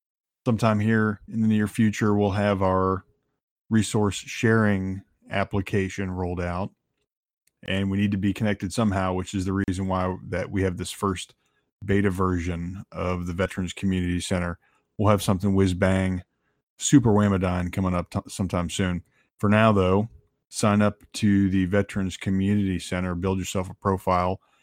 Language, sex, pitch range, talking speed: English, male, 90-100 Hz, 155 wpm